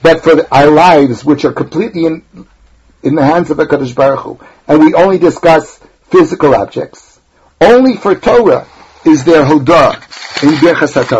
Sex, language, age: male, English, 60-79